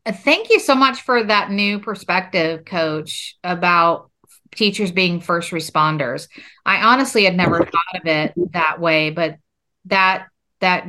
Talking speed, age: 145 wpm, 40-59